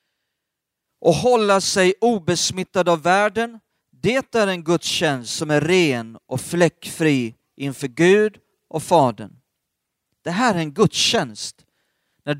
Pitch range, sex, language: 155-225 Hz, male, Swedish